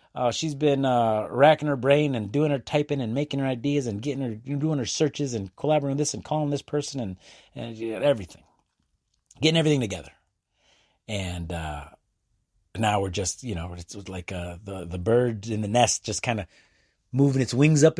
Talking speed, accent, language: 200 wpm, American, English